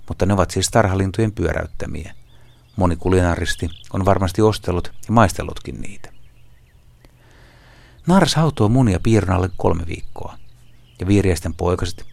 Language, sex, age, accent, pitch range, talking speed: Finnish, male, 60-79, native, 90-115 Hz, 110 wpm